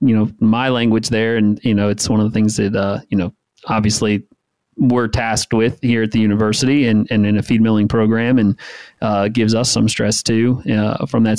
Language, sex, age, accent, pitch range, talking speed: English, male, 30-49, American, 110-130 Hz, 220 wpm